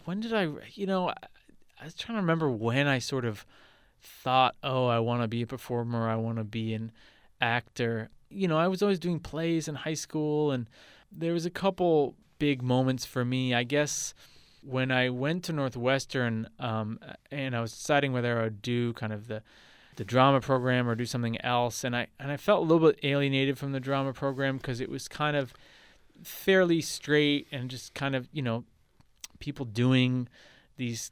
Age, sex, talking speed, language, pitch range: 20-39, male, 195 wpm, English, 115-140 Hz